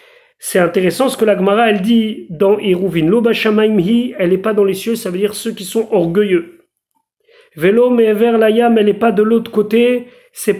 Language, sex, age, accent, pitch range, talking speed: French, male, 40-59, French, 190-235 Hz, 205 wpm